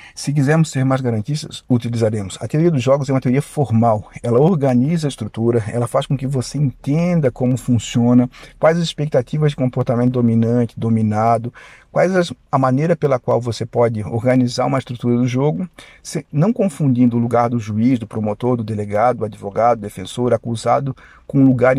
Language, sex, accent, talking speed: Portuguese, male, Brazilian, 175 wpm